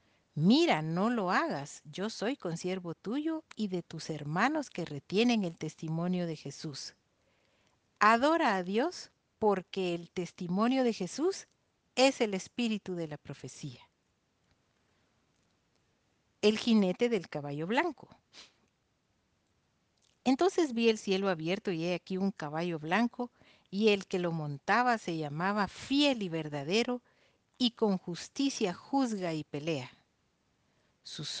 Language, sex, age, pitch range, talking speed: Spanish, female, 50-69, 165-235 Hz, 125 wpm